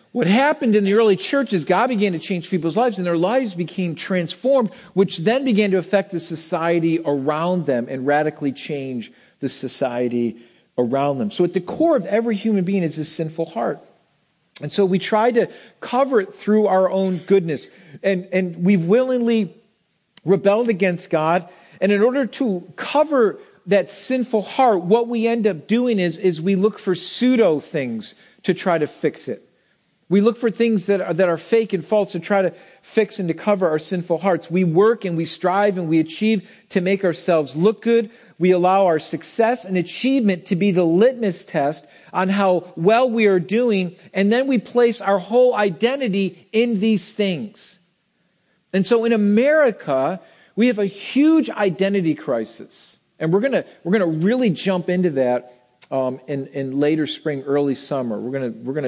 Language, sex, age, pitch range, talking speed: English, male, 50-69, 165-220 Hz, 190 wpm